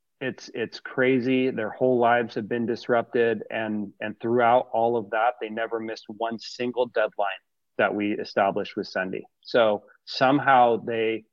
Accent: American